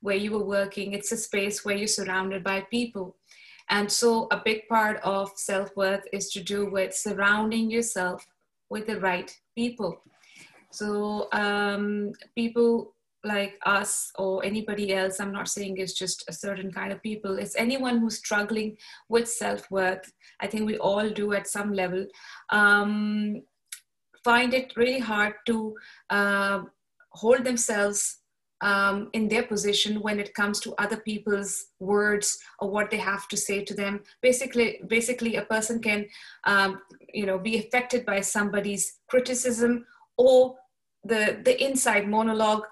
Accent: Indian